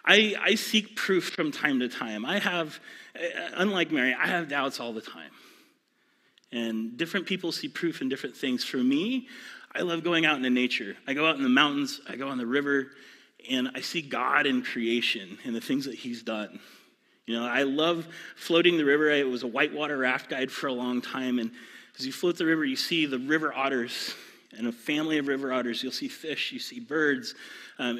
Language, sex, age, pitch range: English, male, 30-49, 130-195 Hz